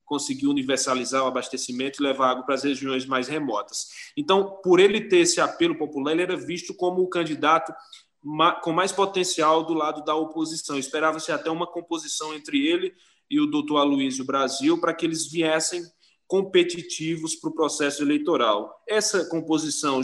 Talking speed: 160 wpm